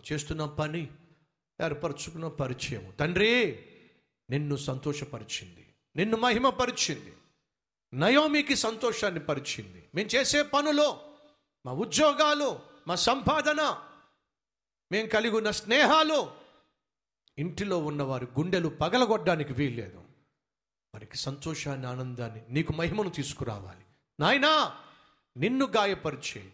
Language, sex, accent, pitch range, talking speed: Telugu, male, native, 145-225 Hz, 80 wpm